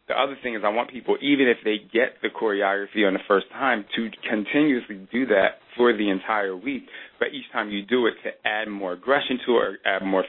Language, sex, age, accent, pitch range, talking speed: English, male, 30-49, American, 100-120 Hz, 235 wpm